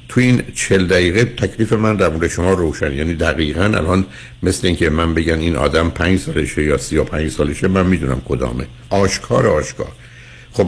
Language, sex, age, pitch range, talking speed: Persian, male, 60-79, 80-115 Hz, 170 wpm